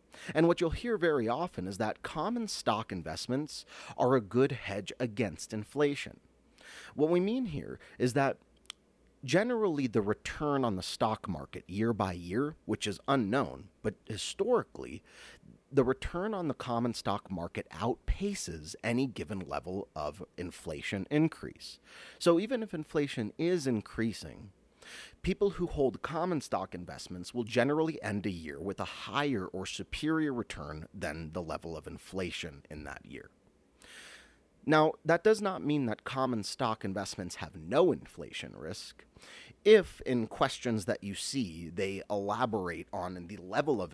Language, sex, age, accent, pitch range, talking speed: English, male, 30-49, American, 95-145 Hz, 145 wpm